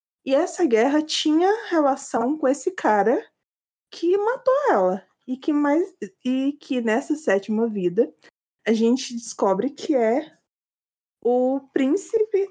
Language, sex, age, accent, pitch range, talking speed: Portuguese, female, 20-39, Brazilian, 210-320 Hz, 115 wpm